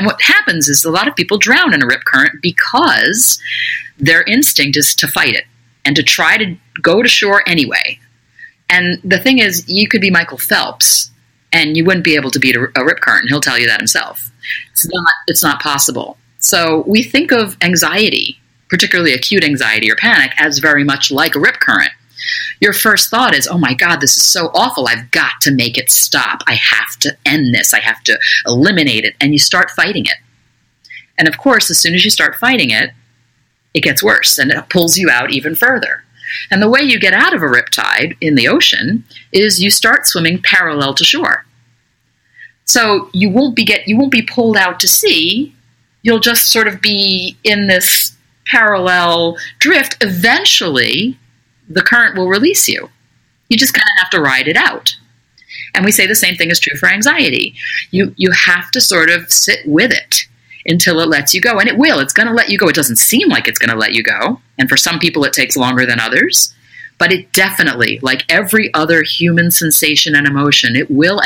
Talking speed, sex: 205 wpm, female